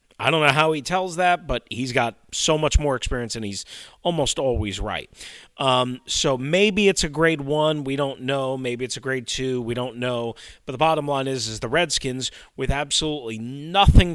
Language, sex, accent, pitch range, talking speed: English, male, American, 120-155 Hz, 205 wpm